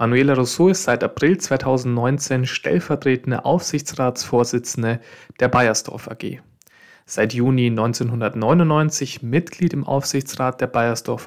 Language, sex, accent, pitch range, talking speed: German, male, German, 120-145 Hz, 100 wpm